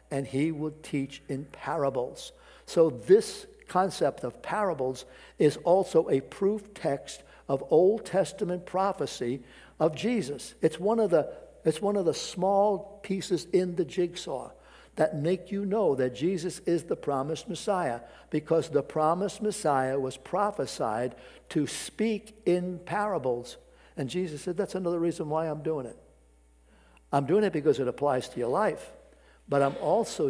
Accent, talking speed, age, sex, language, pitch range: American, 145 wpm, 60-79, male, English, 135-185 Hz